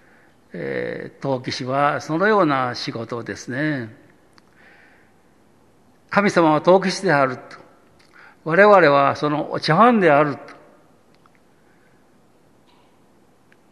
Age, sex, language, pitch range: 60-79, male, Japanese, 135-175 Hz